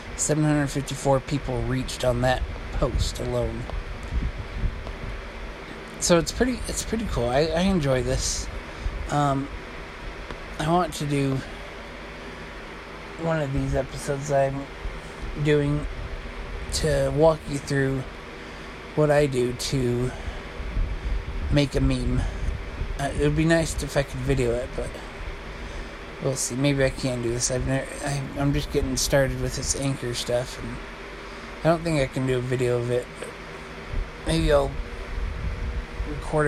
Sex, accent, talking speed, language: male, American, 135 wpm, English